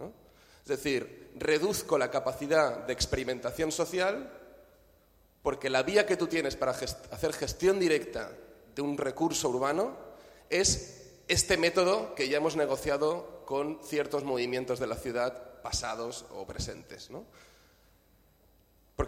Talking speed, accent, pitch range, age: 130 wpm, Spanish, 125-170 Hz, 30-49